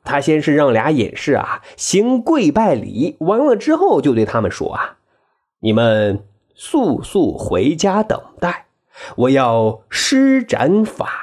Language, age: Chinese, 30-49